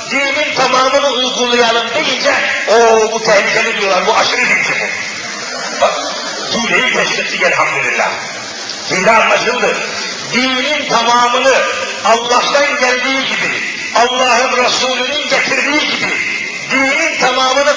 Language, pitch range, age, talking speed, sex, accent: Turkish, 220-275 Hz, 50-69, 105 wpm, male, native